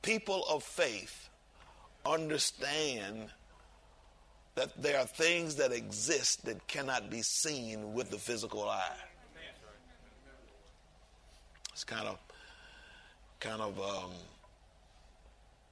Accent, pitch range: American, 85-115 Hz